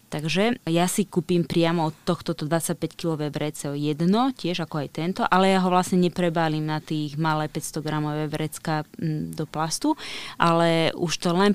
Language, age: Slovak, 20-39